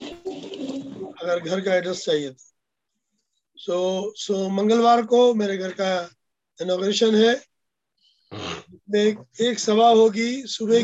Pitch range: 185-230 Hz